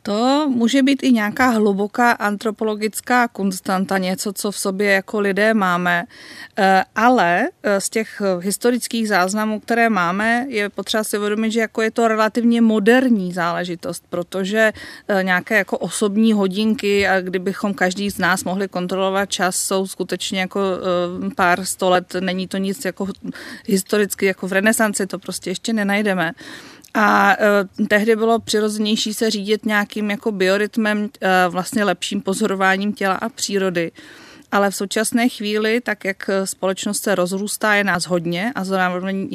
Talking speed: 140 wpm